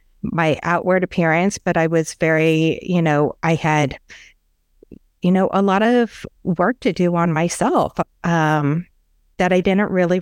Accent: American